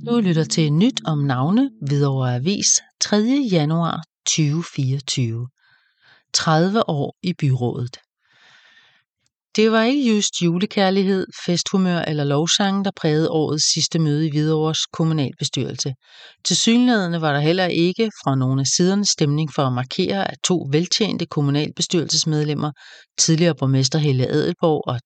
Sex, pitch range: female, 145-185 Hz